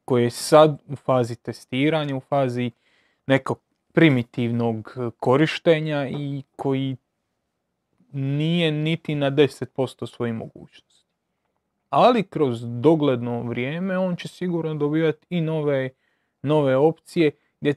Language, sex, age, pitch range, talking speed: Croatian, male, 30-49, 130-160 Hz, 110 wpm